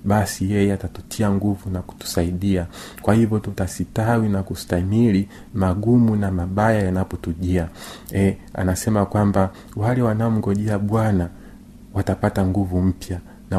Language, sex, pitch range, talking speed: Swahili, male, 95-115 Hz, 110 wpm